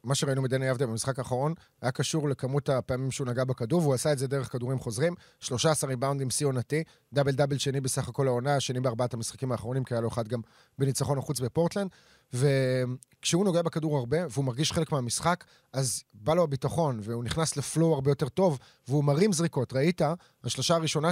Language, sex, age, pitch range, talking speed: Hebrew, male, 30-49, 130-165 Hz, 190 wpm